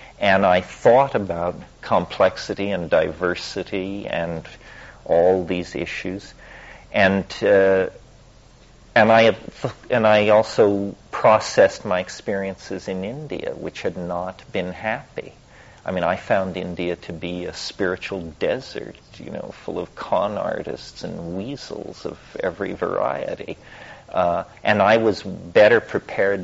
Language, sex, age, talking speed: English, male, 50-69, 125 wpm